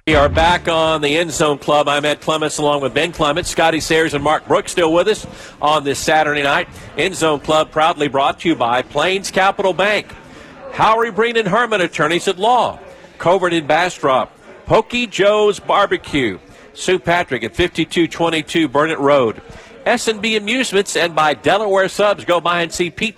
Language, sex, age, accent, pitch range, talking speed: English, male, 50-69, American, 150-180 Hz, 175 wpm